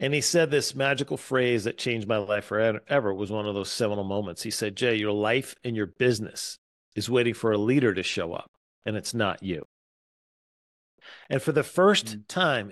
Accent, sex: American, male